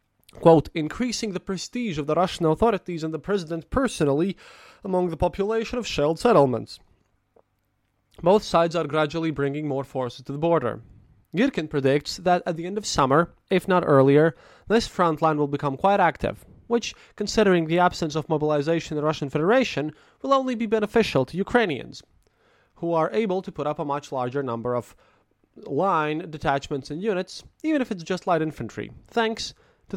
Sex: male